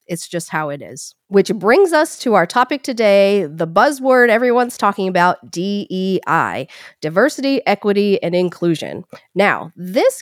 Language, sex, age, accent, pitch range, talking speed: English, female, 40-59, American, 160-220 Hz, 140 wpm